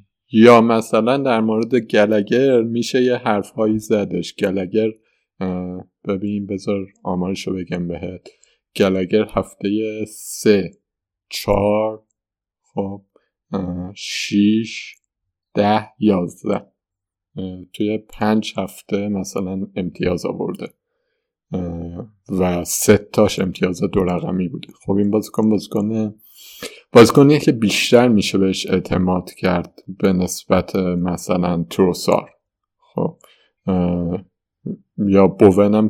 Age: 50-69